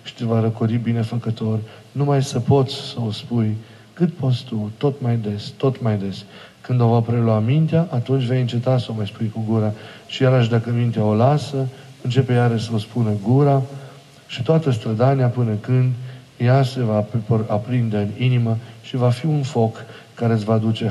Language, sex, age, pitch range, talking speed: Romanian, male, 40-59, 110-125 Hz, 190 wpm